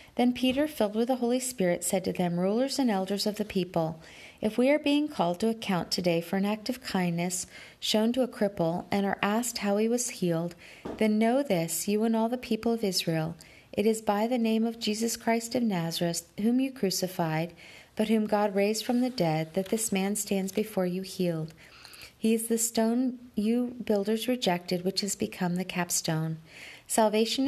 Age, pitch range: 40-59, 180-230 Hz